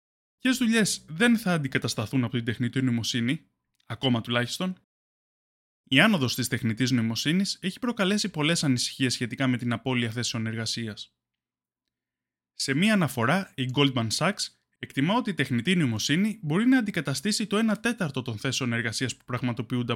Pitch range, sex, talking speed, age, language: 125-195 Hz, male, 145 wpm, 20-39, Greek